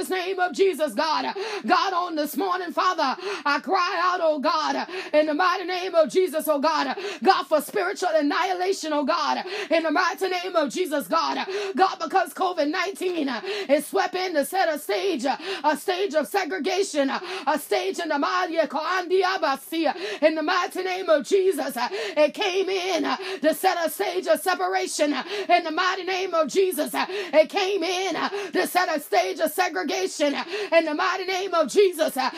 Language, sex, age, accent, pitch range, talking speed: English, female, 30-49, American, 315-380 Hz, 185 wpm